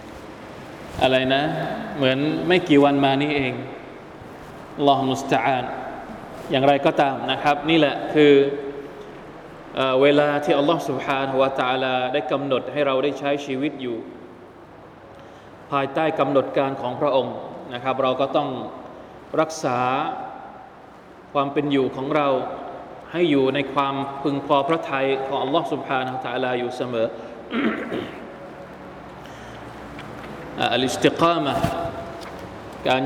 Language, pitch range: Thai, 130-150 Hz